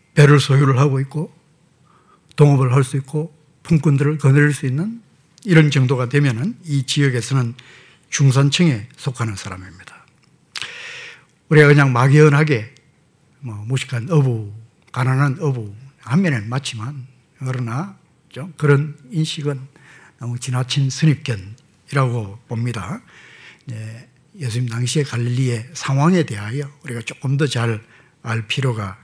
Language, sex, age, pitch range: Korean, male, 60-79, 120-150 Hz